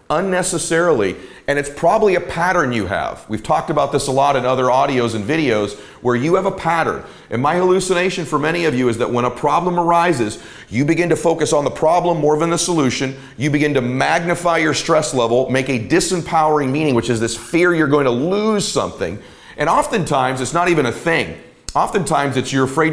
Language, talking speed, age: English, 205 wpm, 40-59